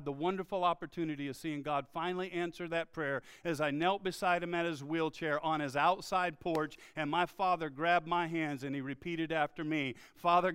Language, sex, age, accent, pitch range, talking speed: English, male, 50-69, American, 165-205 Hz, 195 wpm